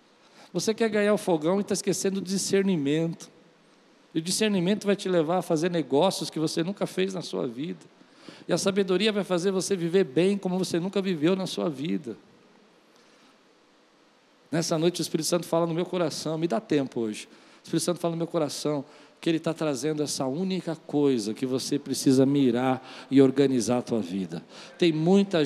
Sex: male